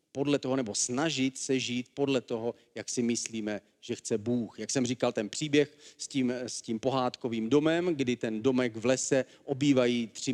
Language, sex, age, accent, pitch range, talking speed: Czech, male, 40-59, native, 115-140 Hz, 180 wpm